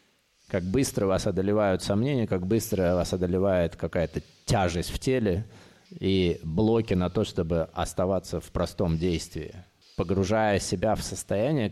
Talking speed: 135 wpm